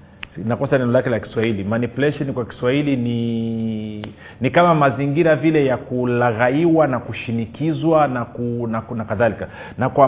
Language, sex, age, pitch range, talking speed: Swahili, male, 40-59, 120-150 Hz, 145 wpm